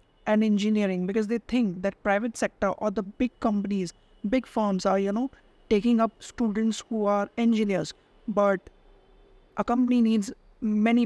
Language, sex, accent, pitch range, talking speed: English, female, Indian, 195-220 Hz, 150 wpm